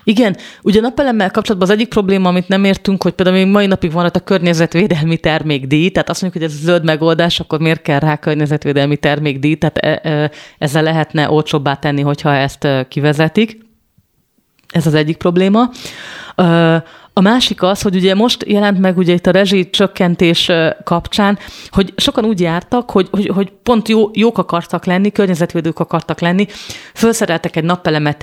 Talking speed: 165 wpm